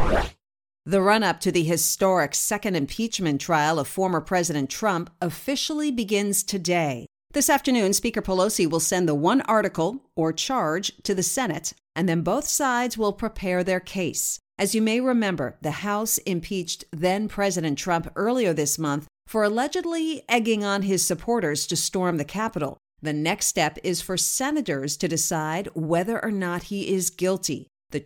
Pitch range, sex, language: 165-220 Hz, female, English